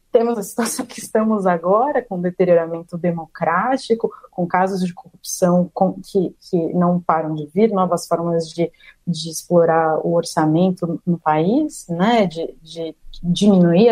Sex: female